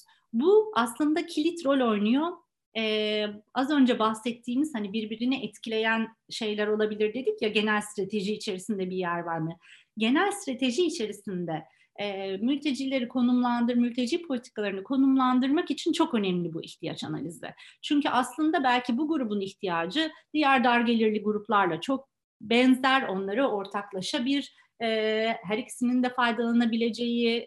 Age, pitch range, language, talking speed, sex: 40-59, 205-270 Hz, Turkish, 125 wpm, female